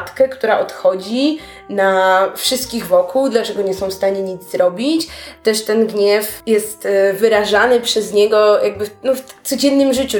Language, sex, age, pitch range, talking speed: Polish, female, 20-39, 205-270 Hz, 145 wpm